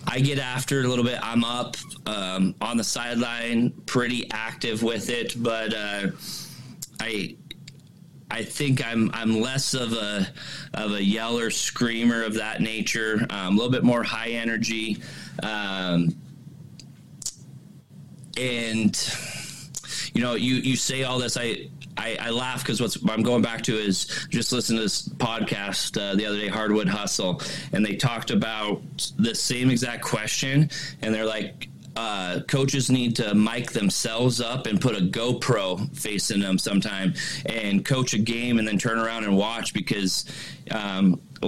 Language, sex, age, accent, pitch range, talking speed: English, male, 20-39, American, 110-130 Hz, 155 wpm